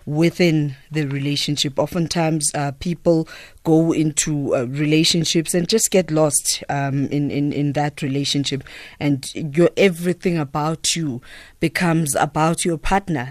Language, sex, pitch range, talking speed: English, female, 145-170 Hz, 130 wpm